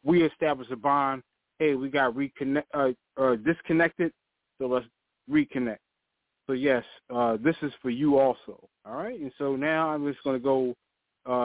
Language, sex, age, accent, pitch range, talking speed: English, male, 20-39, American, 130-160 Hz, 175 wpm